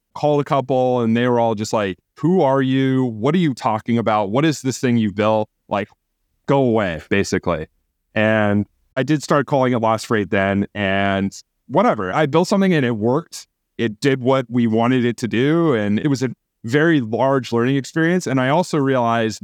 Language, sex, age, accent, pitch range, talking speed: English, male, 30-49, American, 105-130 Hz, 200 wpm